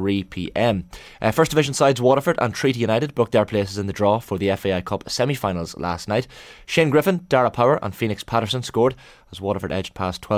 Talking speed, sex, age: 200 wpm, male, 20-39